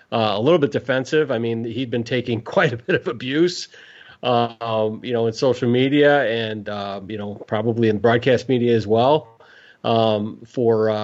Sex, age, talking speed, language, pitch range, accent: male, 40-59, 190 wpm, English, 115-130 Hz, American